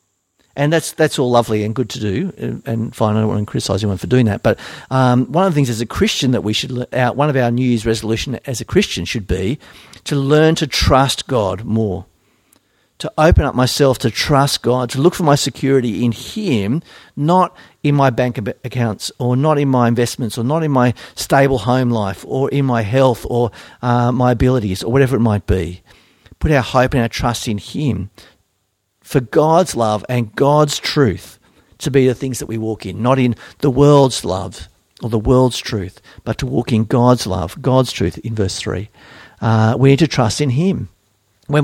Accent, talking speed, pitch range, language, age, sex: Australian, 210 wpm, 110-145 Hz, English, 50-69, male